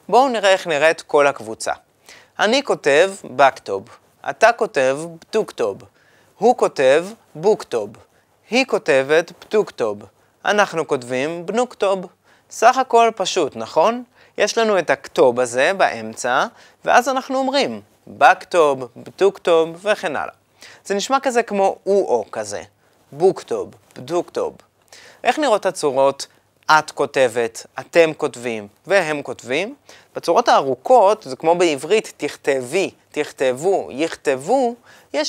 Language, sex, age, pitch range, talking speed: Hebrew, male, 30-49, 140-230 Hz, 110 wpm